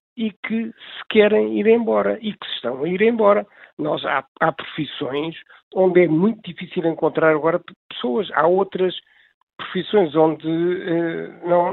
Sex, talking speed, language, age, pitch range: male, 150 wpm, Portuguese, 60-79, 155-180 Hz